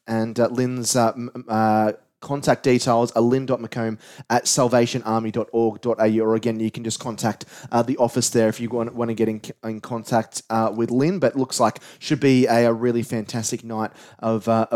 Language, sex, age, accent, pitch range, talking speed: English, male, 30-49, Australian, 115-145 Hz, 190 wpm